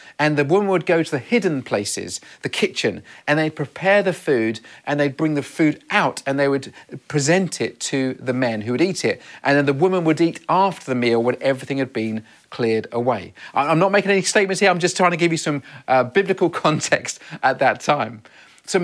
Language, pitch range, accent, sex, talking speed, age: English, 140-185 Hz, British, male, 220 wpm, 40-59